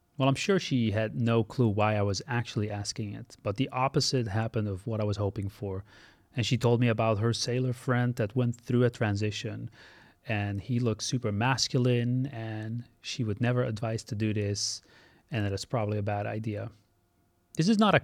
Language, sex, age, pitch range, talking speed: English, male, 30-49, 105-130 Hz, 205 wpm